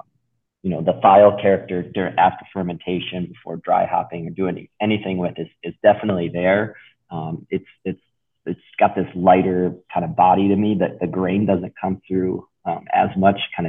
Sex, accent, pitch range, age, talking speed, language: male, American, 85-100 Hz, 30-49, 180 wpm, English